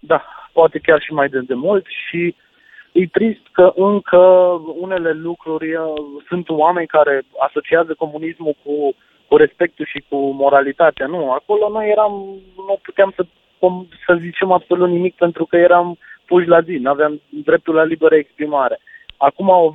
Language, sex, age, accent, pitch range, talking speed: Romanian, male, 30-49, native, 150-180 Hz, 160 wpm